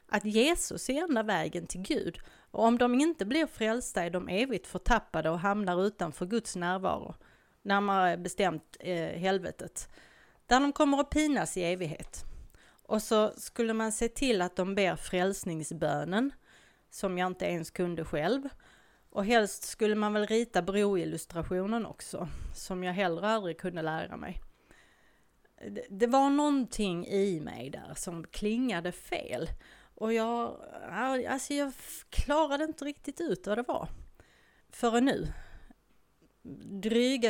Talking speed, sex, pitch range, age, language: 140 wpm, female, 180-240 Hz, 30-49, Swedish